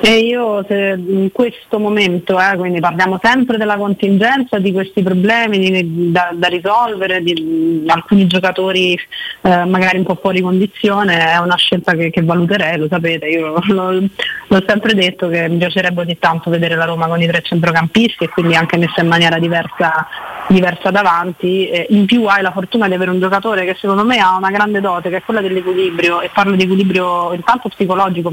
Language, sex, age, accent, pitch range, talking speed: Italian, female, 30-49, native, 170-200 Hz, 190 wpm